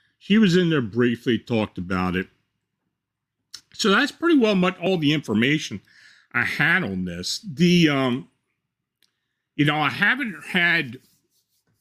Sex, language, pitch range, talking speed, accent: male, English, 105-150 Hz, 135 wpm, American